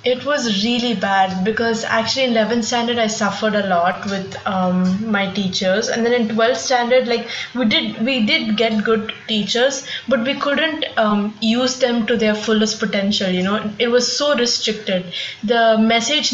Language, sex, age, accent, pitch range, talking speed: English, female, 20-39, Indian, 205-240 Hz, 175 wpm